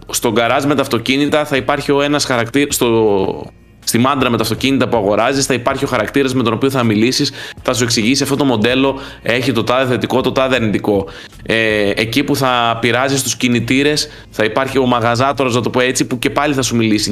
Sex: male